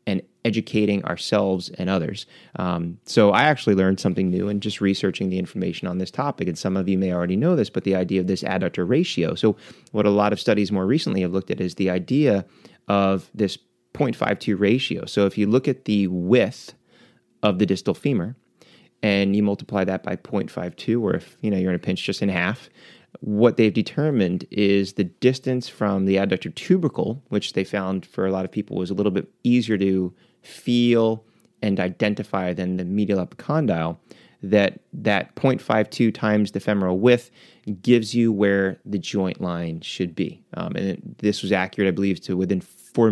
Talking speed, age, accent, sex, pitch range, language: 190 wpm, 30-49, American, male, 95-110 Hz, English